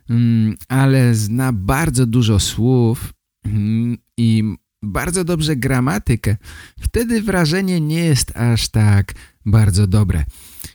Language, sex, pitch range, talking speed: Polish, male, 95-120 Hz, 95 wpm